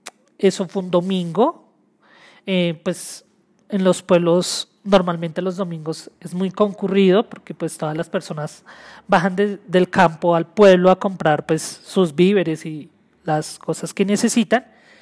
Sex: male